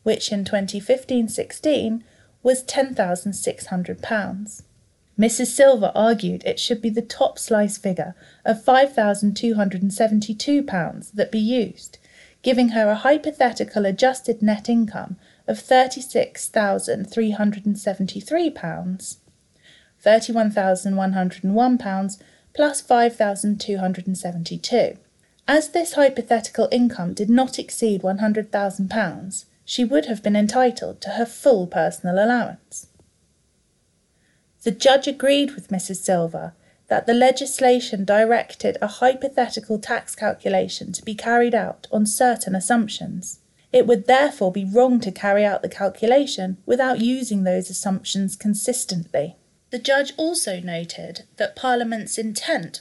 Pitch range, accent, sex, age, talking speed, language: 195-250 Hz, British, female, 30-49, 105 wpm, English